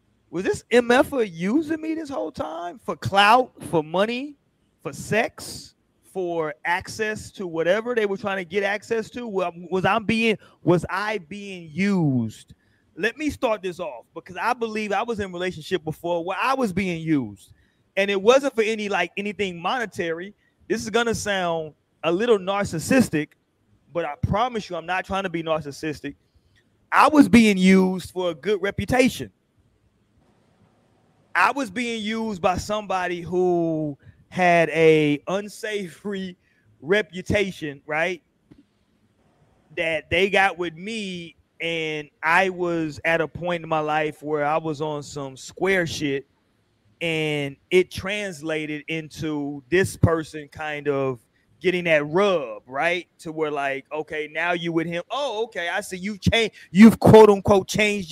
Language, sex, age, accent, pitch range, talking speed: English, male, 30-49, American, 155-205 Hz, 155 wpm